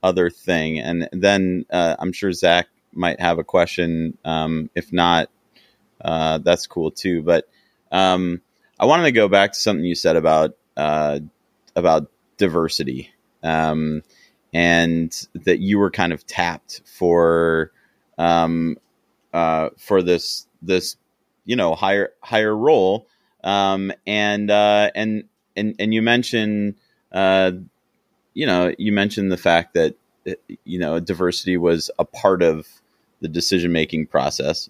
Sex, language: male, English